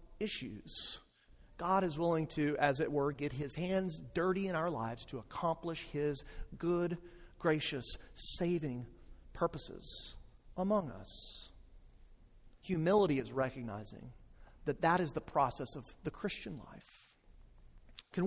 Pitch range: 130-165 Hz